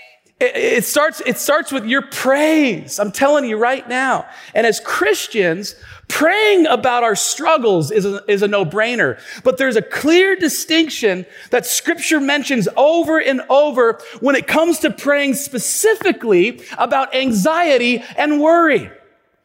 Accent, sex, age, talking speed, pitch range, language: American, male, 40-59, 135 wpm, 190-295 Hz, English